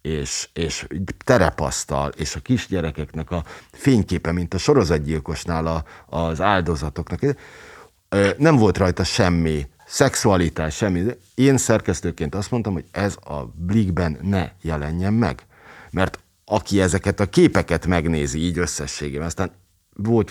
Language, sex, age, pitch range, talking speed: Hungarian, male, 50-69, 85-110 Hz, 120 wpm